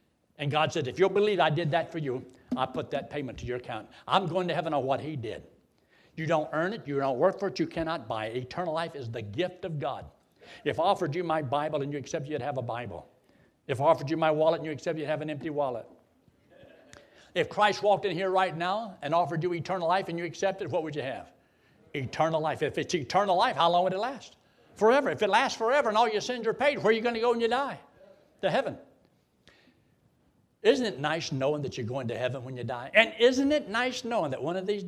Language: English